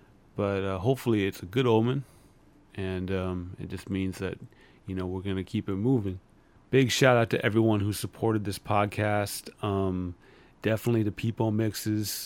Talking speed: 170 wpm